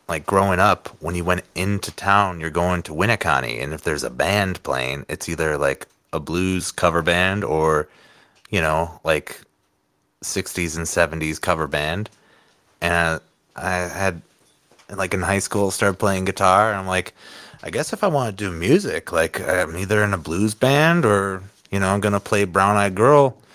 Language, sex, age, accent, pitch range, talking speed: English, male, 30-49, American, 85-100 Hz, 185 wpm